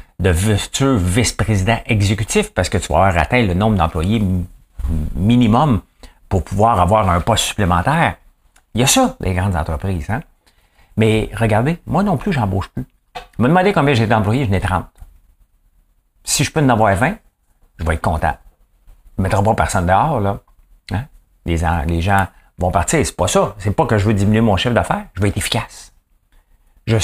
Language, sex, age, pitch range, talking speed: English, male, 50-69, 90-115 Hz, 190 wpm